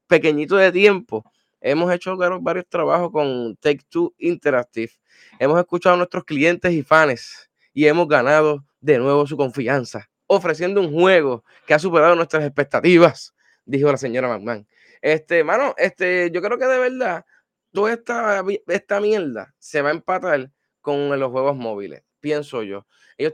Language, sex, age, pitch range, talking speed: Spanish, male, 10-29, 130-180 Hz, 155 wpm